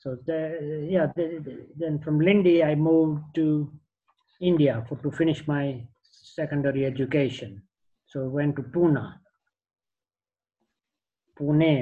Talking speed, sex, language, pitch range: 100 wpm, male, English, 130-160 Hz